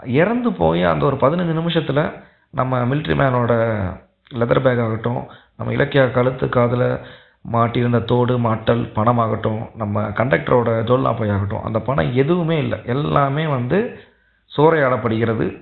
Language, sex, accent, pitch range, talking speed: Tamil, male, native, 115-150 Hz, 120 wpm